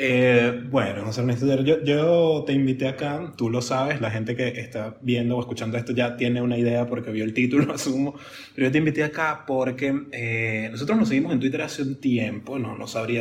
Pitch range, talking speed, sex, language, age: 115-135 Hz, 215 wpm, male, Spanish, 20-39